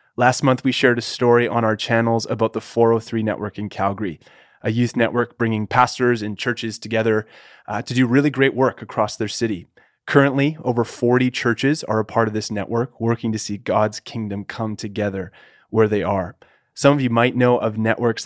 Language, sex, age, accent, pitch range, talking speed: English, male, 30-49, American, 110-125 Hz, 195 wpm